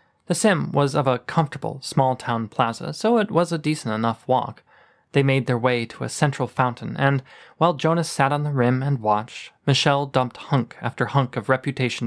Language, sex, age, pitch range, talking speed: English, male, 20-39, 125-155 Hz, 195 wpm